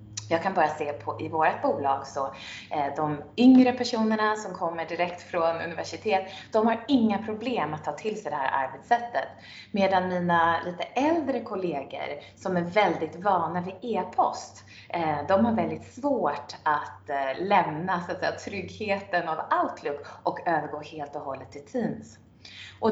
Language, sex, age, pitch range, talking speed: Swedish, female, 20-39, 150-225 Hz, 145 wpm